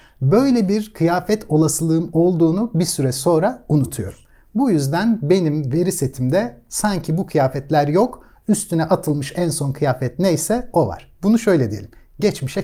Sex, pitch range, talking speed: male, 135-180 Hz, 145 wpm